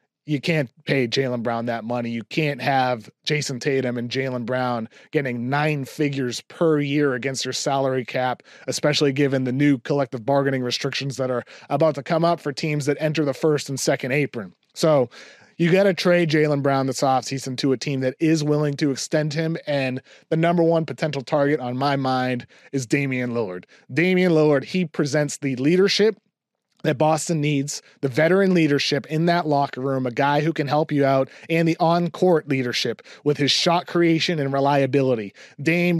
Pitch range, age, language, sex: 135-160 Hz, 30-49, English, male